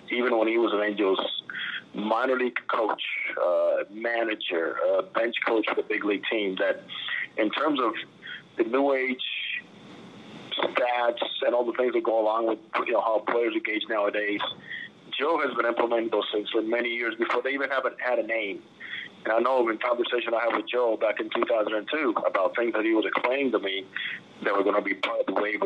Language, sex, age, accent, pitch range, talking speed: English, male, 40-59, American, 110-130 Hz, 200 wpm